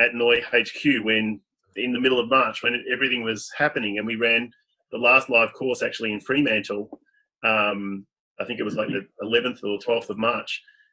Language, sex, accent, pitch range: English, male, Australian, 110-135 Hz